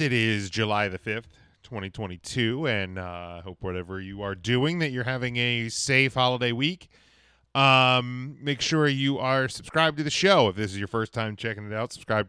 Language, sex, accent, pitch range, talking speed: English, male, American, 100-135 Hz, 190 wpm